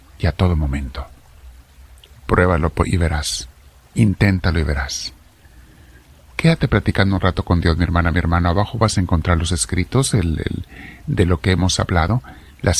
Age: 50-69